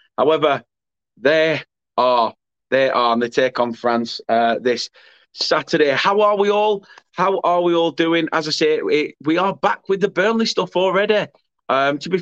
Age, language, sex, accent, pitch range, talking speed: 20-39, English, male, British, 125-175 Hz, 180 wpm